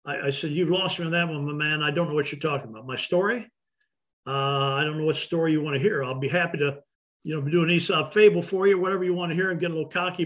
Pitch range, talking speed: 155-195 Hz, 300 wpm